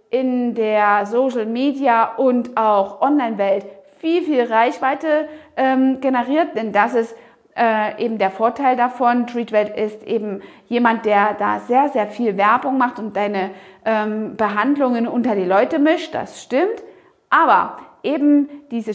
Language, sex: German, female